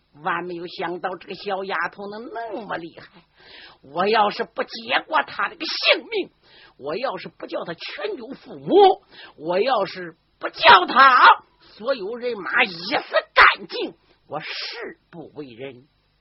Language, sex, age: Chinese, female, 50-69